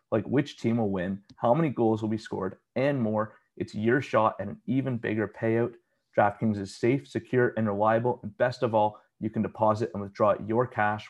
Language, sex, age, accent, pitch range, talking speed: English, male, 30-49, American, 105-120 Hz, 205 wpm